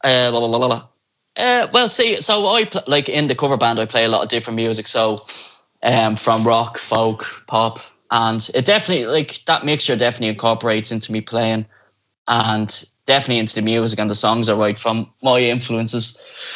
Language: English